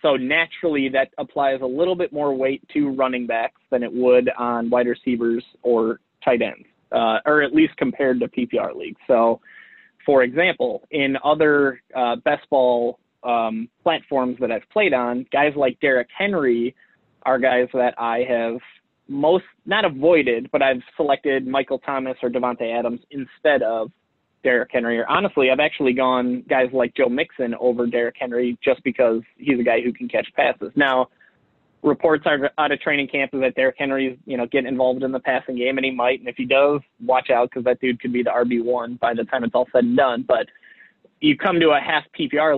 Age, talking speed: 20-39, 195 wpm